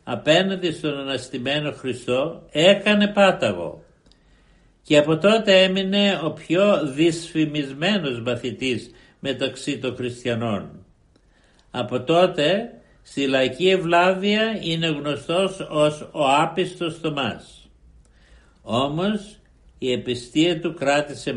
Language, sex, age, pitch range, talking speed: Greek, male, 60-79, 130-180 Hz, 95 wpm